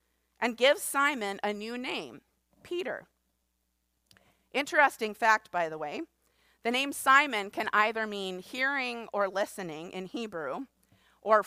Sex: female